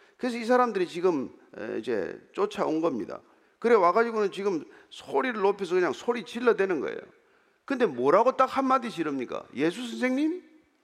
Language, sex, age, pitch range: Korean, male, 40-59, 195-300 Hz